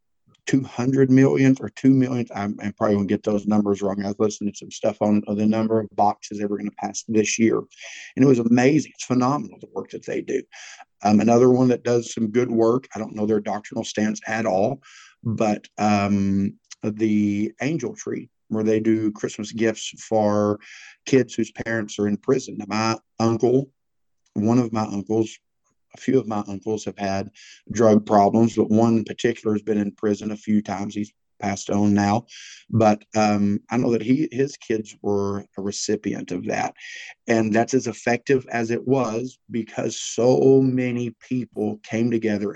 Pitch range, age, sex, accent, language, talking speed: 105-120 Hz, 50-69, male, American, English, 185 wpm